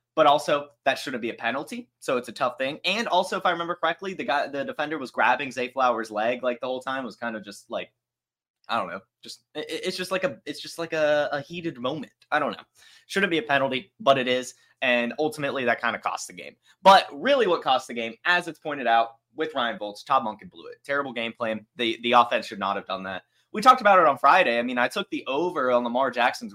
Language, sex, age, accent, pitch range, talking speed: English, male, 10-29, American, 120-165 Hz, 260 wpm